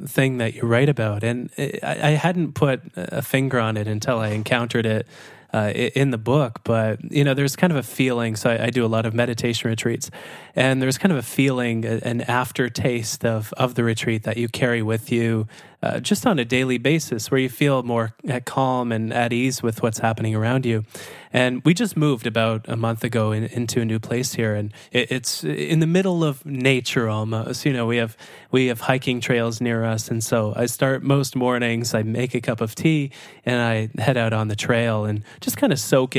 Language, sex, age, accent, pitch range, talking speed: English, male, 20-39, American, 115-135 Hz, 215 wpm